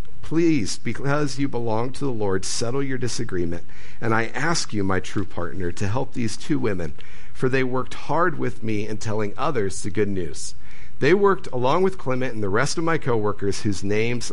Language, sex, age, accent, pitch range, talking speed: English, male, 50-69, American, 105-140 Hz, 195 wpm